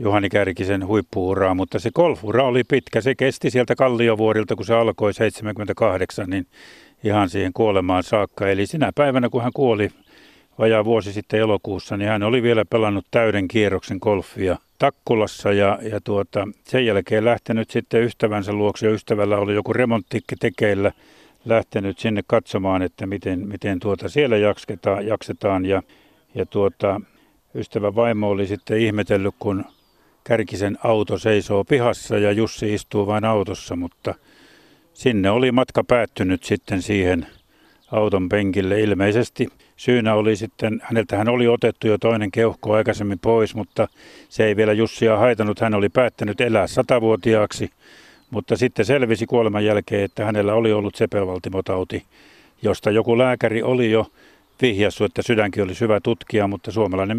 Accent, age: native, 50-69